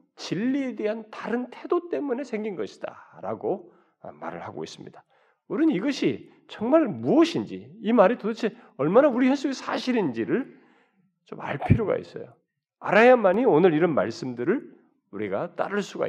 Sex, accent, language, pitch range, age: male, native, Korean, 155-250 Hz, 40-59